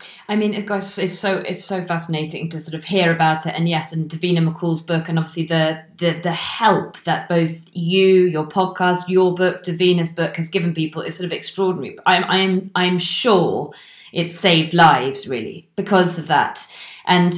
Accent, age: British, 20-39